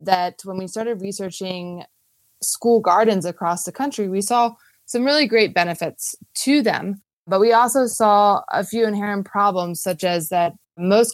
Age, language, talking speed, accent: 20-39, English, 160 wpm, American